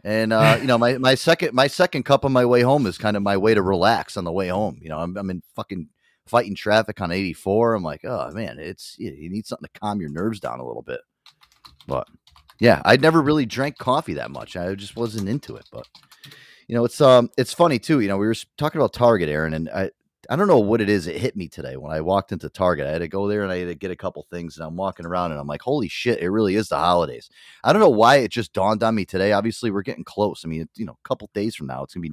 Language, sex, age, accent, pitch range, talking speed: English, male, 30-49, American, 90-125 Hz, 285 wpm